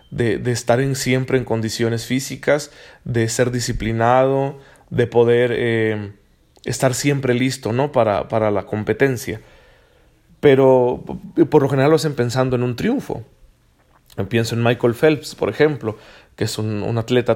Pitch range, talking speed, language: 115-145 Hz, 150 wpm, Spanish